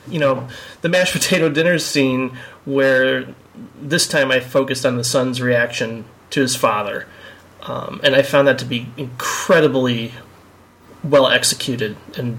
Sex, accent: male, American